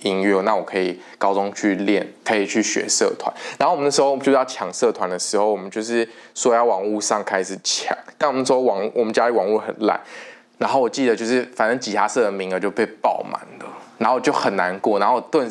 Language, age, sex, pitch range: Chinese, 20-39, male, 100-130 Hz